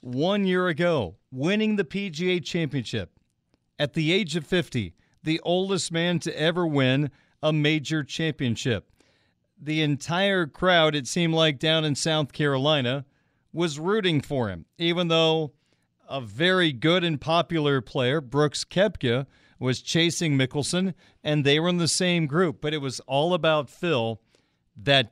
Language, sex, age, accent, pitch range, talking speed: English, male, 40-59, American, 130-165 Hz, 150 wpm